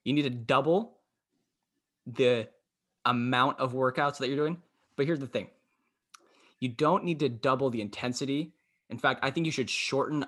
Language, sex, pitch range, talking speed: English, male, 110-135 Hz, 170 wpm